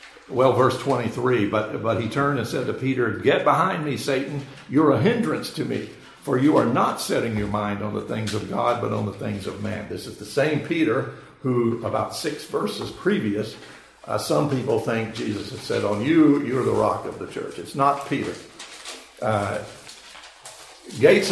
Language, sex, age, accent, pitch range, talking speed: English, male, 60-79, American, 110-140 Hz, 190 wpm